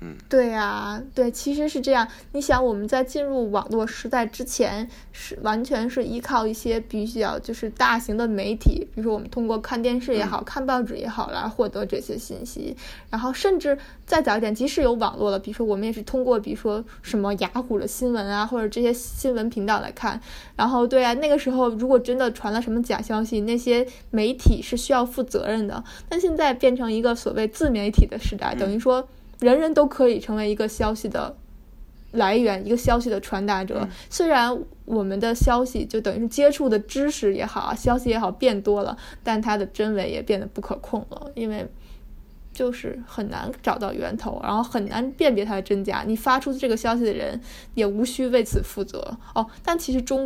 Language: Japanese